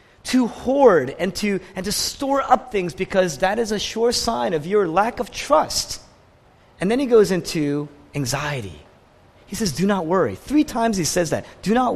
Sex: male